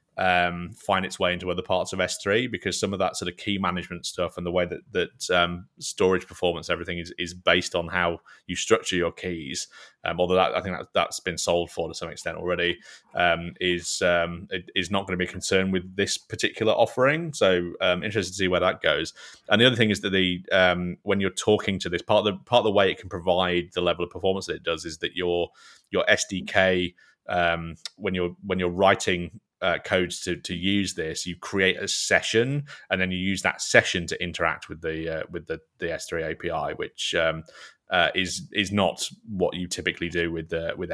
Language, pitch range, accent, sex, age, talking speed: English, 85-95 Hz, British, male, 20-39, 220 wpm